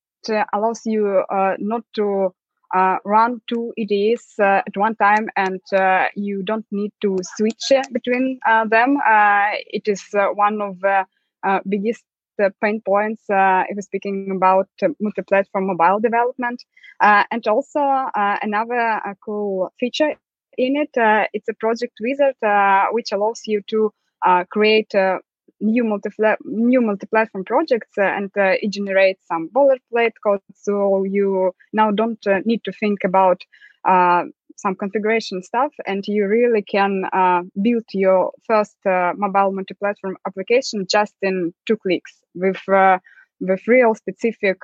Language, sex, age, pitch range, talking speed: English, female, 20-39, 195-225 Hz, 155 wpm